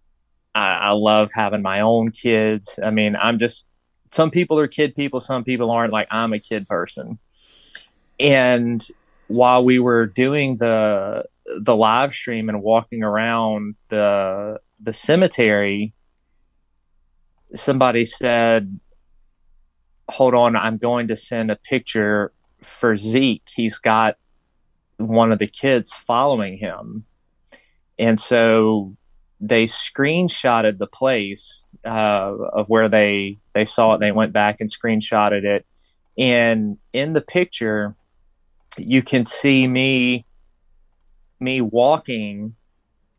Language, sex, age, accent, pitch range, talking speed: English, male, 30-49, American, 100-120 Hz, 120 wpm